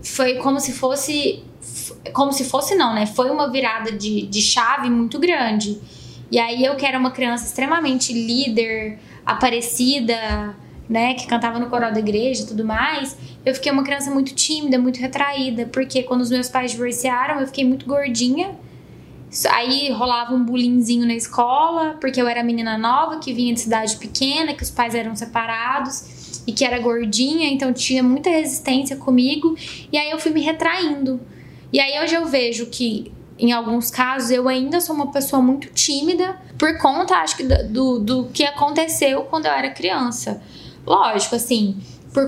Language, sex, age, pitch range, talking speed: Portuguese, female, 10-29, 235-280 Hz, 170 wpm